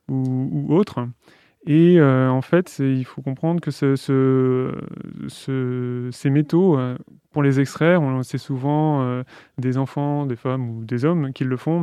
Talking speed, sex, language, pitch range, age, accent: 160 wpm, male, French, 130-145 Hz, 30-49, French